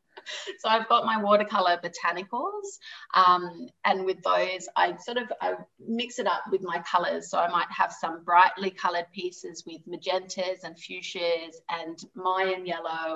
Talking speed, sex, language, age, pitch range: 160 wpm, female, English, 30-49, 175-225 Hz